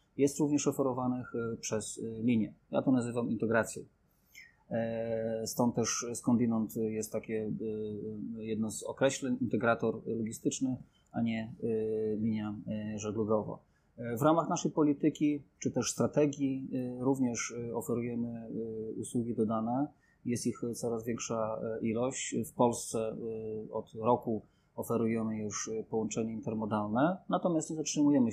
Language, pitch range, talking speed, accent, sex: Polish, 110-130 Hz, 105 wpm, native, male